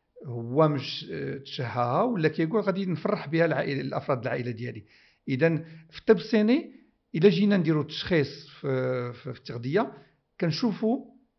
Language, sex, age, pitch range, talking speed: Arabic, male, 60-79, 135-195 Hz, 130 wpm